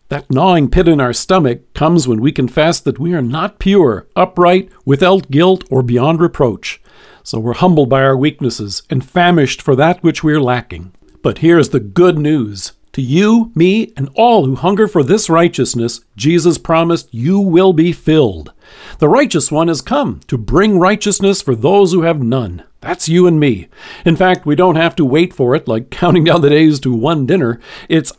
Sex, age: male, 50-69